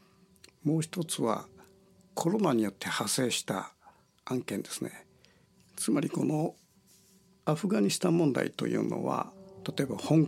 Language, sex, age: Japanese, male, 60-79